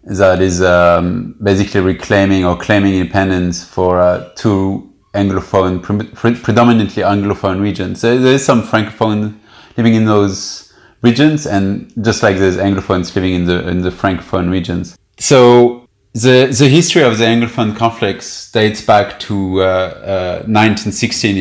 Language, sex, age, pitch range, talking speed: English, male, 30-49, 95-110 Hz, 145 wpm